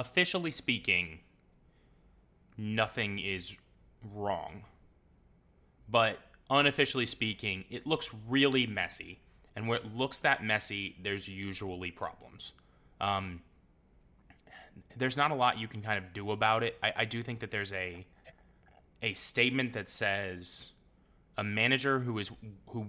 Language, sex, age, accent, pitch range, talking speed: English, male, 20-39, American, 90-115 Hz, 130 wpm